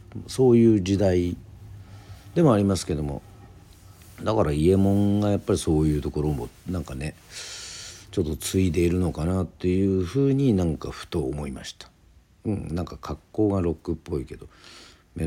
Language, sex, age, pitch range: Japanese, male, 50-69, 75-95 Hz